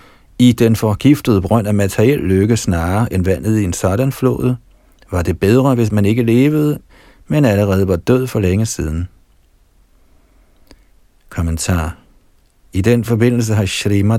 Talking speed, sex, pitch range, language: 145 wpm, male, 90-115 Hz, Danish